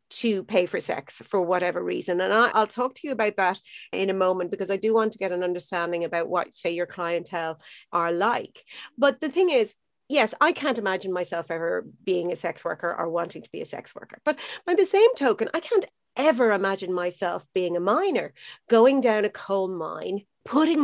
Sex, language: female, English